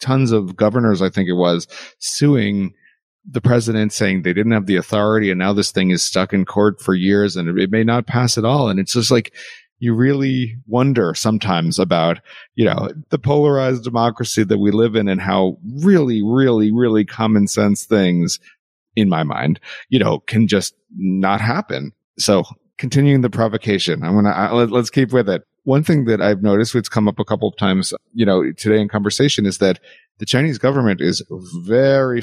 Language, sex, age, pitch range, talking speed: English, male, 40-59, 95-120 Hz, 195 wpm